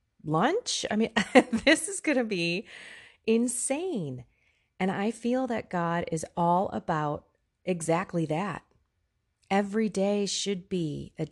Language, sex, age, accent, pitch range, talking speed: English, female, 30-49, American, 160-220 Hz, 125 wpm